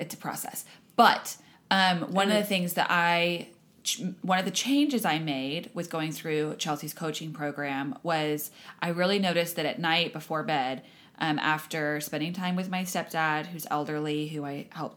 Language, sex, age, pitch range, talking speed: English, female, 20-39, 155-195 Hz, 175 wpm